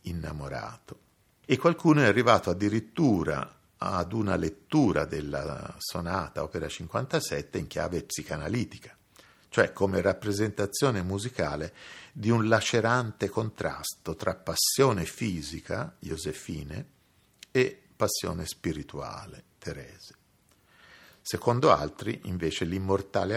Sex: male